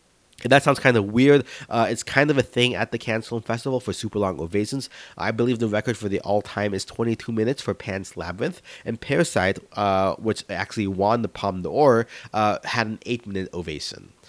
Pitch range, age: 95-120 Hz, 30-49